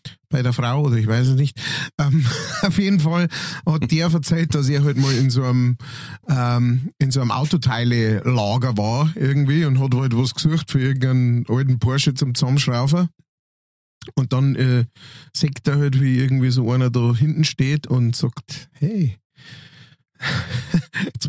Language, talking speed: German, 165 wpm